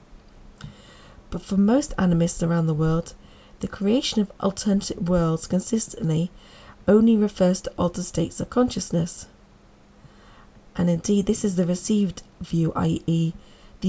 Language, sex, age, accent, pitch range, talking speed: English, female, 40-59, British, 170-205 Hz, 125 wpm